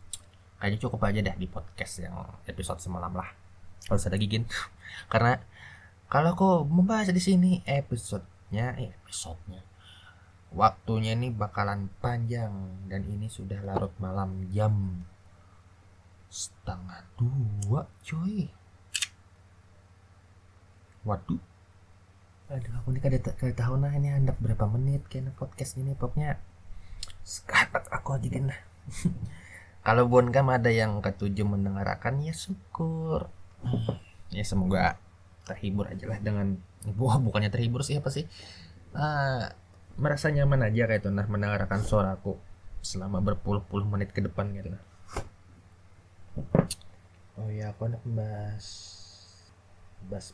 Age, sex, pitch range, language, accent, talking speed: 20-39, male, 95-115 Hz, Indonesian, native, 115 wpm